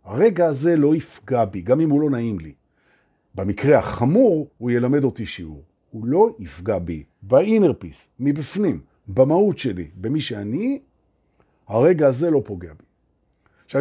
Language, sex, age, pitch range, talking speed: Hebrew, male, 50-69, 100-160 Hz, 125 wpm